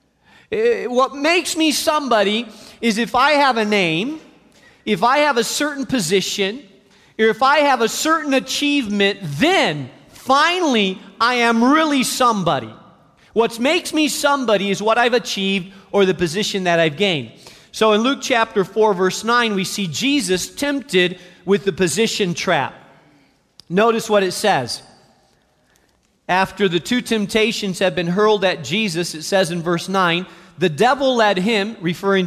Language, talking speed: English, 150 wpm